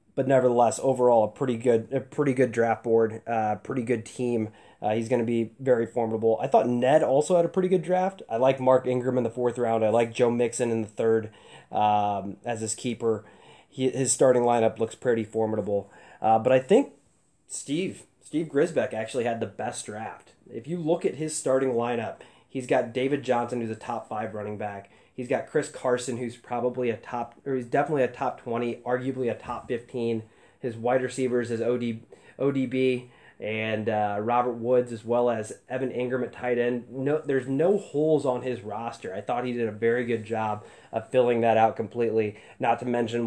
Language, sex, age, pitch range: English, male, 20-39, 110-125 Hz